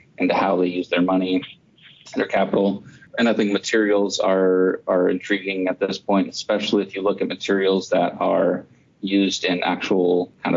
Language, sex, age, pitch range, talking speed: English, male, 30-49, 90-100 Hz, 175 wpm